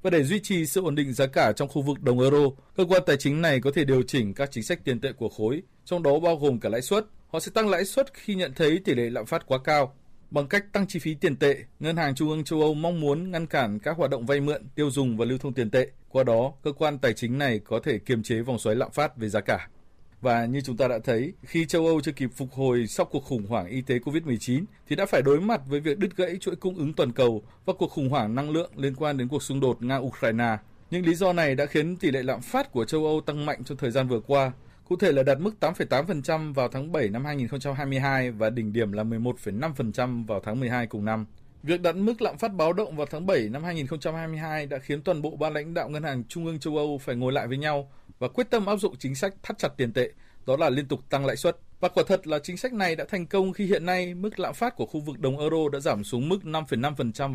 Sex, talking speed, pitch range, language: male, 270 wpm, 125-165 Hz, Vietnamese